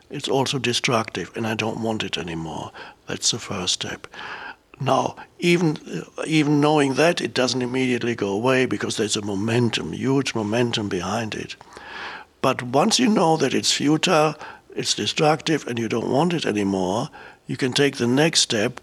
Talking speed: 165 wpm